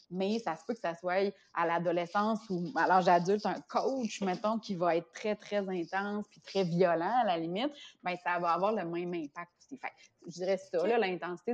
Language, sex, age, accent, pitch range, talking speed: French, female, 30-49, Canadian, 170-210 Hz, 220 wpm